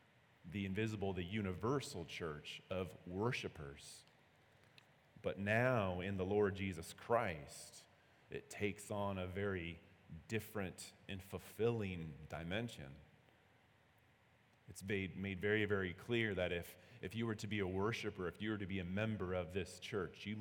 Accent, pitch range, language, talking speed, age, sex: American, 95-115 Hz, English, 145 wpm, 30-49, male